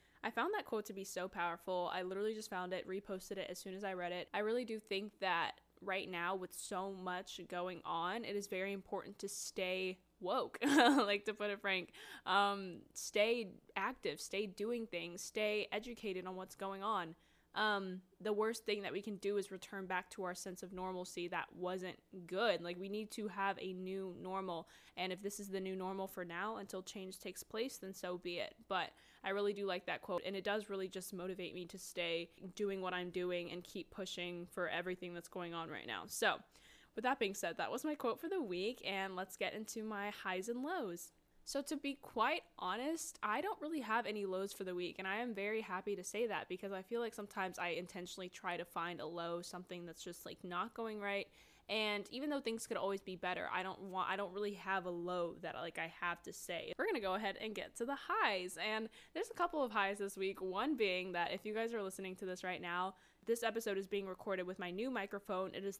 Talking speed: 235 wpm